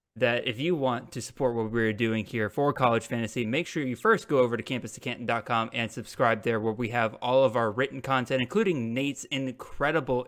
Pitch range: 125-155 Hz